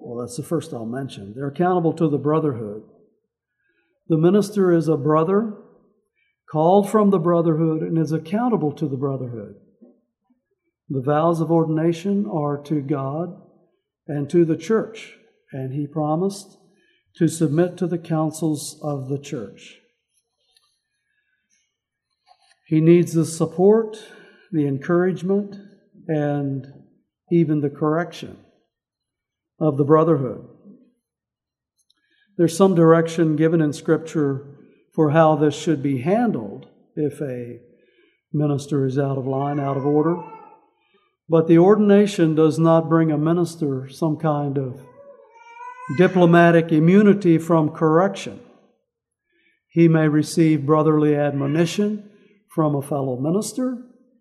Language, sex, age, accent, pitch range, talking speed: English, male, 60-79, American, 150-200 Hz, 120 wpm